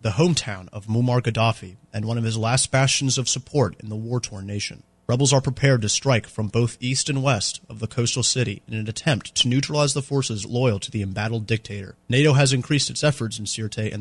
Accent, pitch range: American, 105-130 Hz